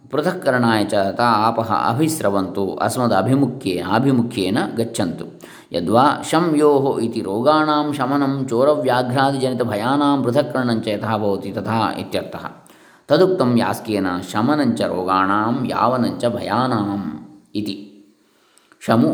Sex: male